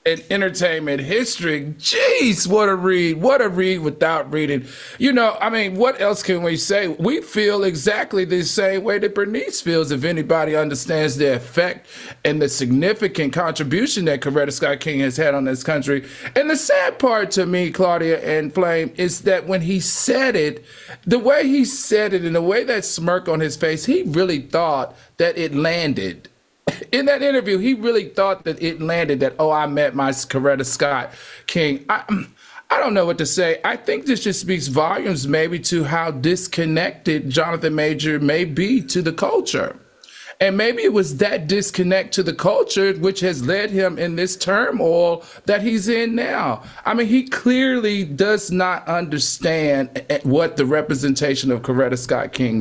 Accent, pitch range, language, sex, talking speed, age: American, 145-195 Hz, English, male, 180 wpm, 40-59